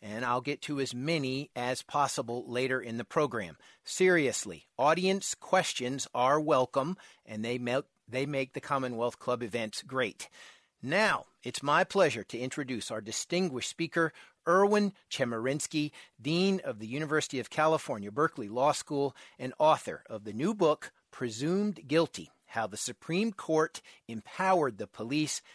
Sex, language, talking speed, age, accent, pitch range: male, English, 140 wpm, 40-59, American, 125-165 Hz